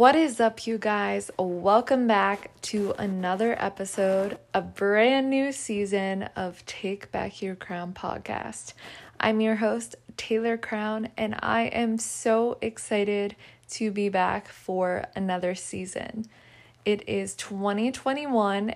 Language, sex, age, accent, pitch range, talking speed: English, female, 20-39, American, 185-220 Hz, 125 wpm